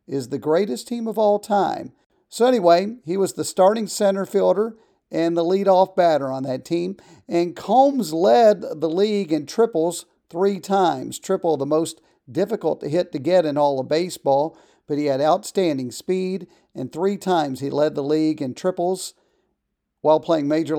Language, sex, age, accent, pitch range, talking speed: English, male, 40-59, American, 145-195 Hz, 175 wpm